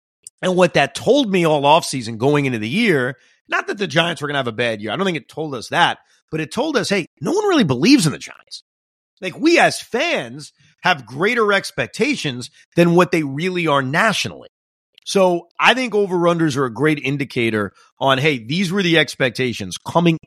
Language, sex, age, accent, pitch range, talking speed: English, male, 30-49, American, 125-190 Hz, 205 wpm